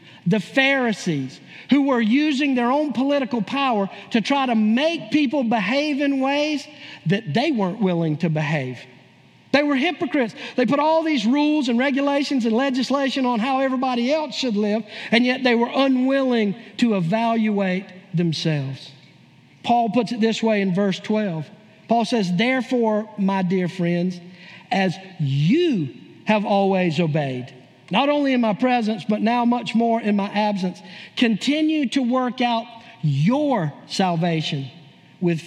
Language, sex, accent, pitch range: English, male, American, 190-265 Hz